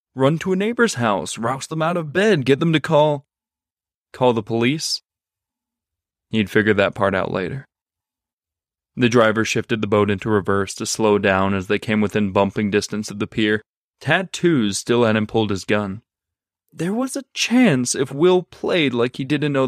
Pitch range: 100-125 Hz